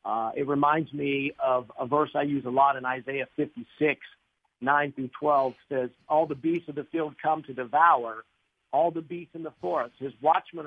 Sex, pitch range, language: male, 140-170 Hz, English